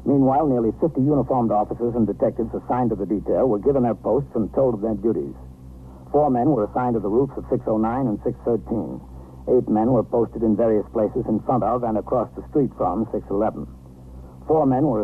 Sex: male